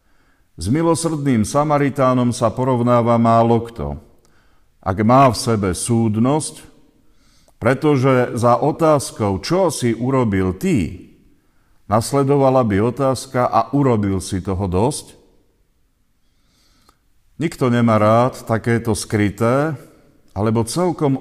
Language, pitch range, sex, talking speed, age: Slovak, 100-135 Hz, male, 95 wpm, 50-69